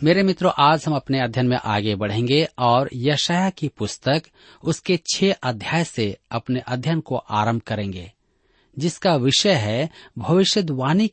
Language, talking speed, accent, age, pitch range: Hindi, 140 wpm, native, 40-59, 115-165 Hz